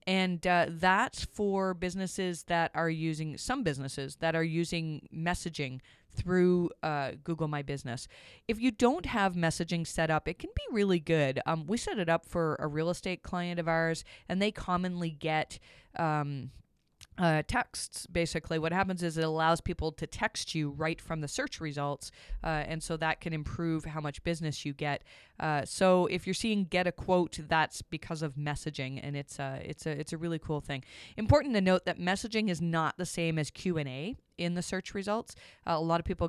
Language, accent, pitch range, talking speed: English, American, 145-175 Hz, 195 wpm